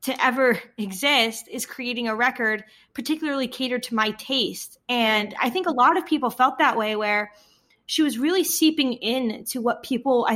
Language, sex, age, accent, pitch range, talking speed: English, female, 20-39, American, 215-255 Hz, 185 wpm